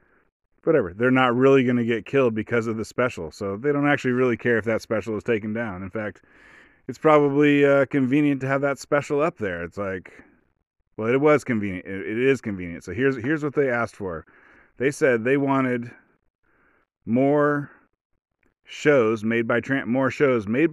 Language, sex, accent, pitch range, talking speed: English, male, American, 110-140 Hz, 180 wpm